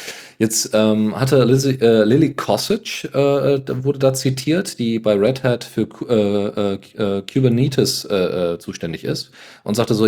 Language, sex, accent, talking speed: German, male, German, 150 wpm